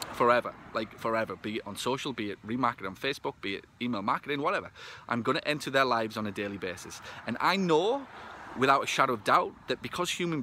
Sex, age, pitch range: male, 30-49, 115-150 Hz